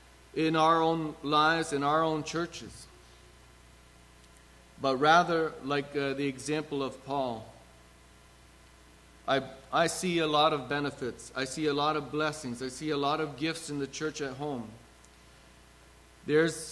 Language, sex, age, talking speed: English, male, 40-59, 145 wpm